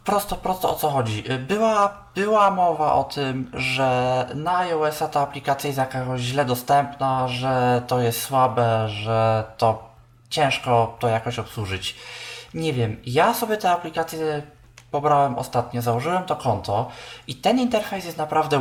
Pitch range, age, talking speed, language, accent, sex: 130-170 Hz, 20-39, 145 wpm, Polish, native, male